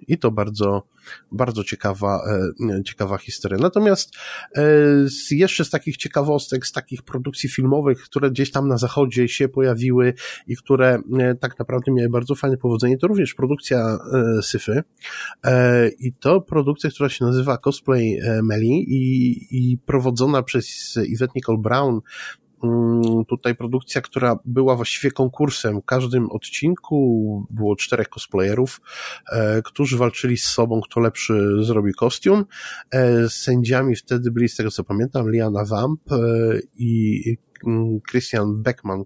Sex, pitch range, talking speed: male, 110-135 Hz, 125 wpm